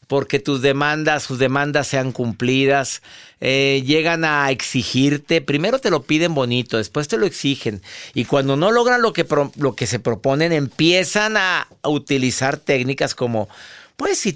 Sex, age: male, 50-69